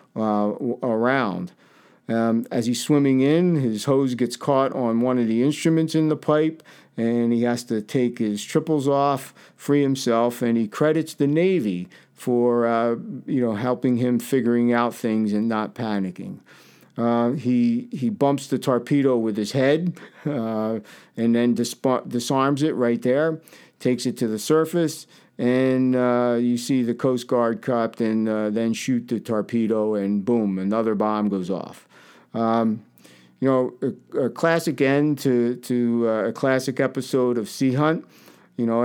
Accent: American